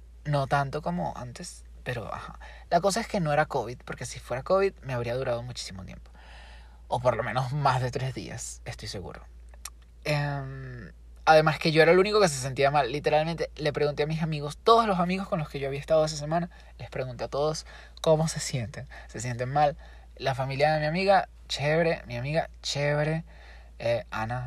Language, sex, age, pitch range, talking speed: Spanish, male, 20-39, 120-155 Hz, 200 wpm